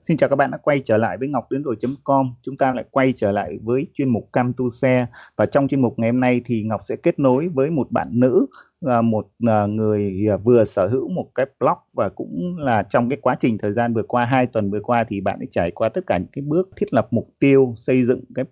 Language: Vietnamese